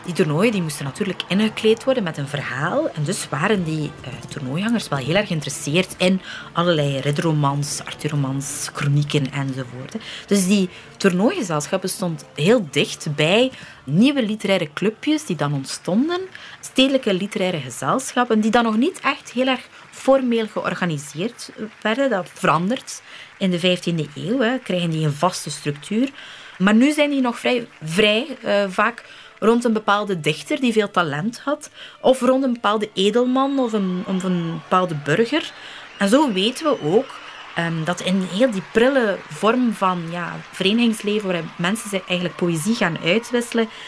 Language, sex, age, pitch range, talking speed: Dutch, female, 30-49, 165-230 Hz, 150 wpm